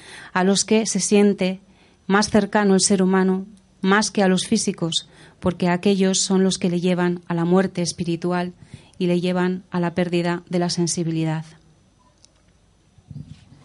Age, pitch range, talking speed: 30-49, 175-200 Hz, 155 wpm